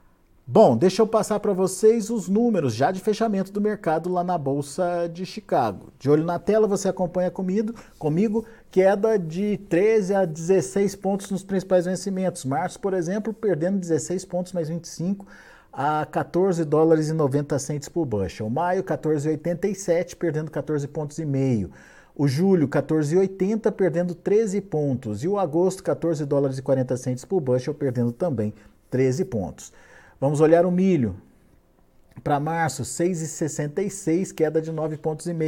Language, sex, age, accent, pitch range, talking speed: Portuguese, male, 50-69, Brazilian, 145-190 Hz, 150 wpm